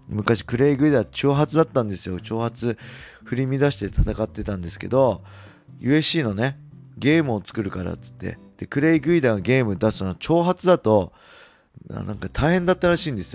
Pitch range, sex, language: 95-130 Hz, male, Japanese